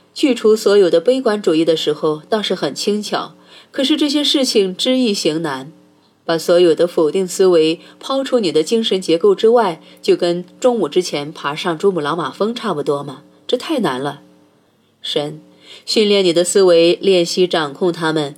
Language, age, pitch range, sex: Chinese, 30-49, 155-205 Hz, female